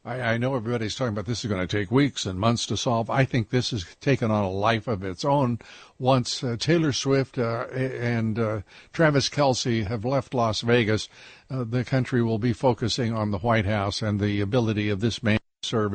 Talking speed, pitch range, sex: 210 wpm, 110-135 Hz, male